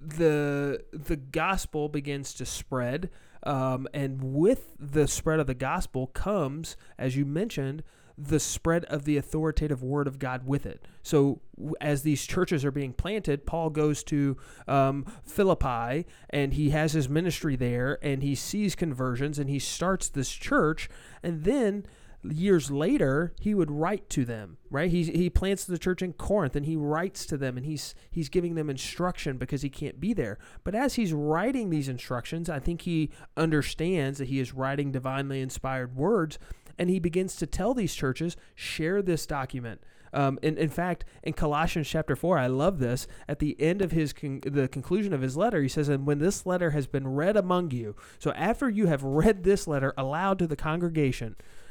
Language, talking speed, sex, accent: English, 185 wpm, male, American